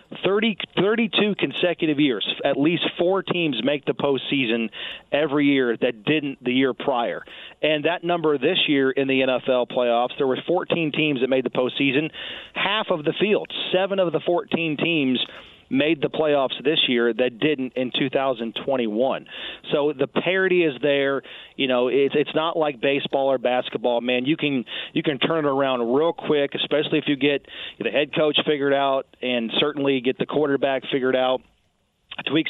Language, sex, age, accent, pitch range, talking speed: English, male, 40-59, American, 130-155 Hz, 175 wpm